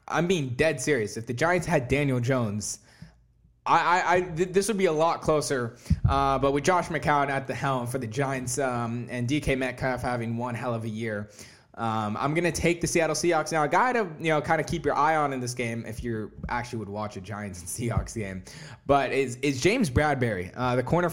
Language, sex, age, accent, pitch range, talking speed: English, male, 20-39, American, 120-150 Hz, 235 wpm